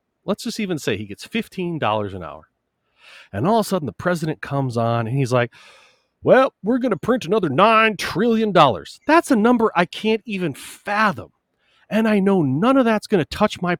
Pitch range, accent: 145-220 Hz, American